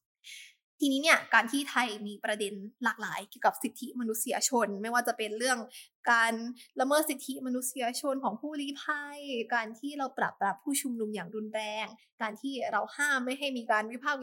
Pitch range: 220-265 Hz